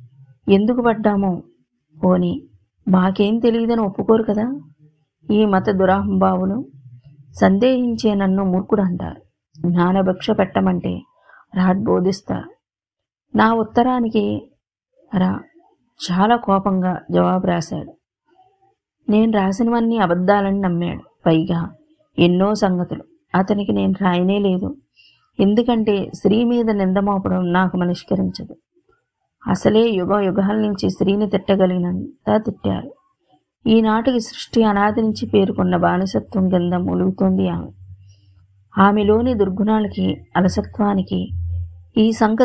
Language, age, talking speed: Telugu, 30-49, 85 wpm